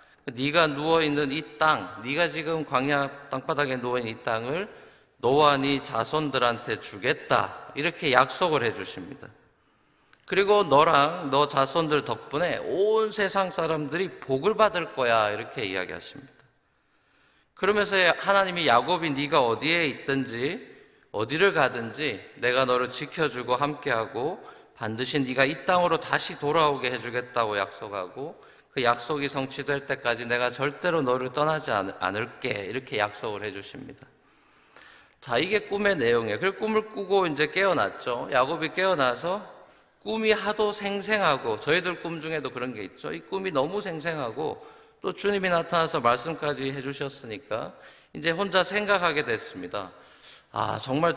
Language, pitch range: Korean, 130-180 Hz